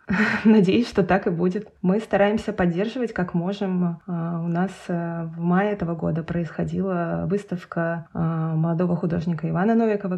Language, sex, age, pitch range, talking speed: Russian, female, 20-39, 170-200 Hz, 130 wpm